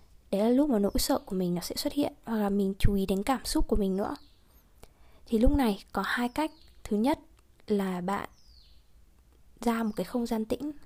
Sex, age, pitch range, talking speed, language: female, 20-39, 205-255 Hz, 215 wpm, Vietnamese